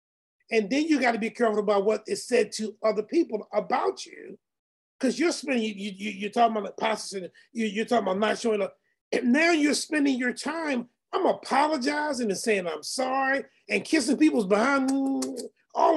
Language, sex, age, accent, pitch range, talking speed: English, male, 30-49, American, 200-275 Hz, 190 wpm